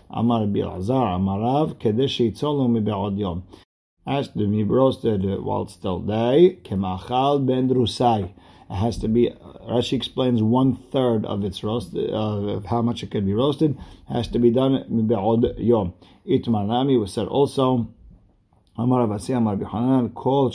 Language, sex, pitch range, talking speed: English, male, 105-125 Hz, 160 wpm